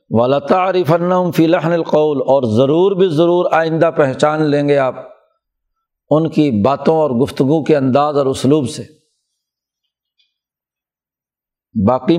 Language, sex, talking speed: Urdu, male, 120 wpm